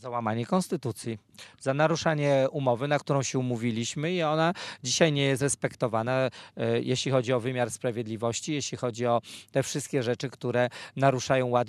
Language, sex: Polish, male